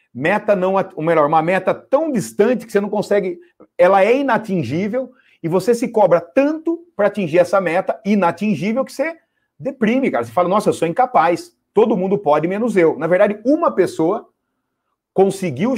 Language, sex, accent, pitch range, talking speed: Portuguese, male, Brazilian, 165-220 Hz, 170 wpm